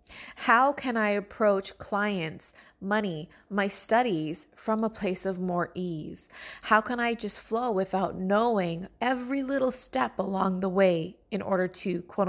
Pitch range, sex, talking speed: 185-225 Hz, female, 150 wpm